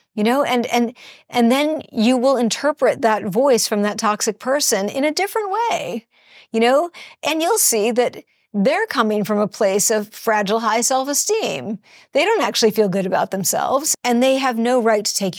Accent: American